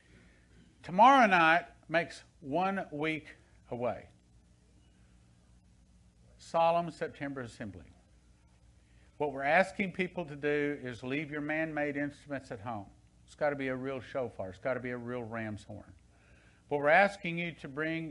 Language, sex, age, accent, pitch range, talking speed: English, male, 50-69, American, 100-150 Hz, 145 wpm